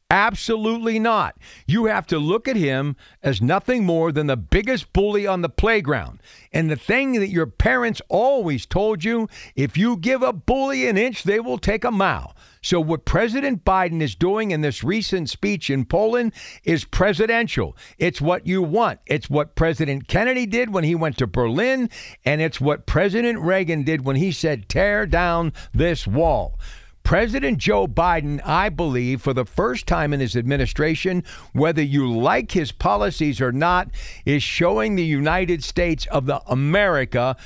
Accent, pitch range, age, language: American, 140-195 Hz, 60-79, English